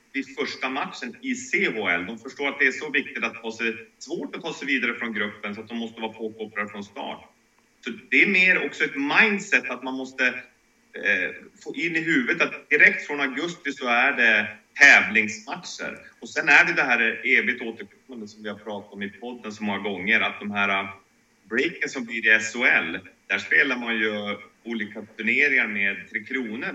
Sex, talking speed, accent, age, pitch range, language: male, 200 wpm, Swedish, 30-49, 100-130 Hz, English